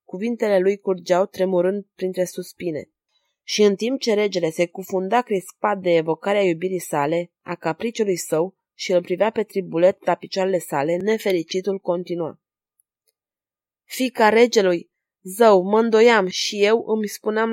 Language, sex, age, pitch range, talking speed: Romanian, female, 20-39, 185-220 Hz, 135 wpm